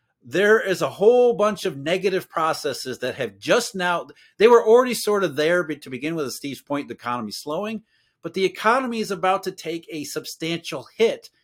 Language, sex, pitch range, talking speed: English, male, 150-215 Hz, 200 wpm